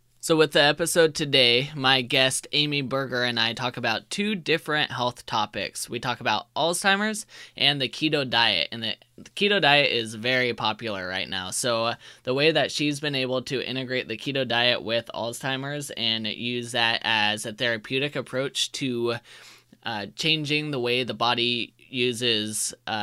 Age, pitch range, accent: 20-39, 115-140 Hz, American